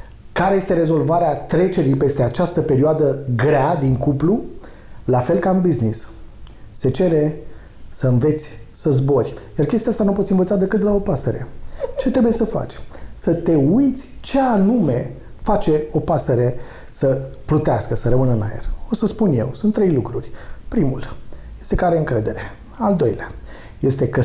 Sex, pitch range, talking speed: male, 125-195 Hz, 165 wpm